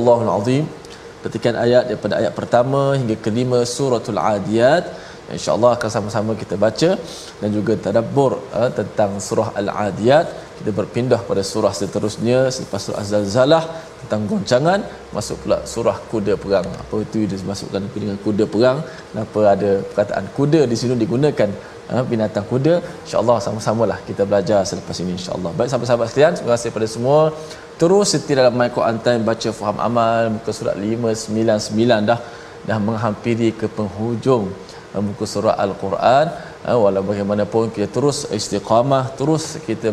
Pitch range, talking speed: 105-125 Hz, 145 wpm